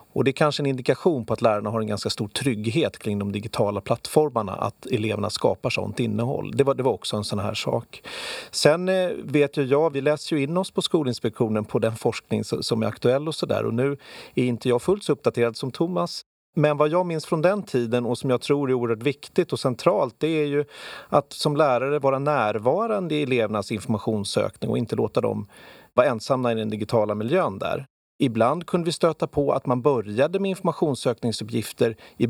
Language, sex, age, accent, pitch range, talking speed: English, male, 30-49, Swedish, 115-155 Hz, 205 wpm